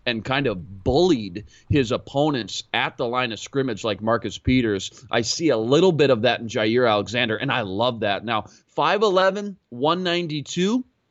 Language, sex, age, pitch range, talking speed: English, male, 30-49, 115-145 Hz, 170 wpm